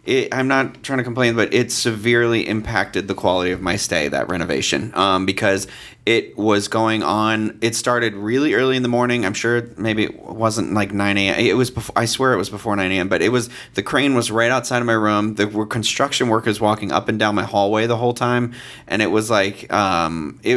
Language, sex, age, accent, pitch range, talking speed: English, male, 30-49, American, 105-125 Hz, 225 wpm